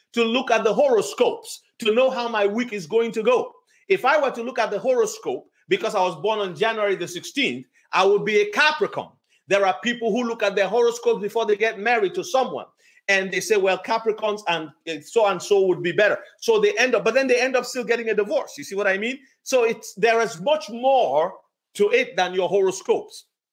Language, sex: English, male